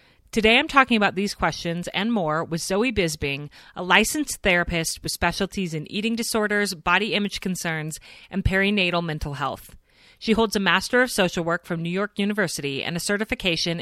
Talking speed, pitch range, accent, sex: 175 wpm, 160-210 Hz, American, female